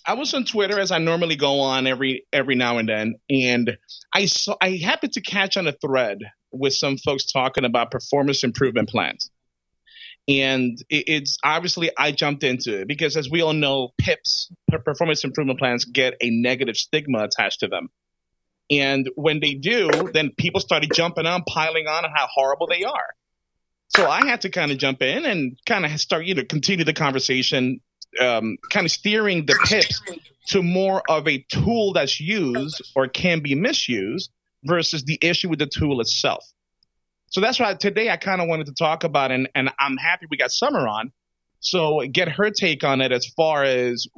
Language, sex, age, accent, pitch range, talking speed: English, male, 30-49, American, 130-170 Hz, 190 wpm